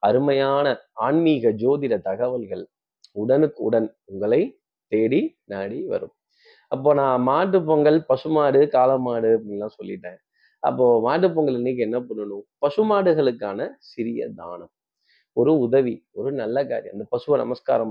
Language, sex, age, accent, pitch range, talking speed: Tamil, male, 30-49, native, 115-190 Hz, 115 wpm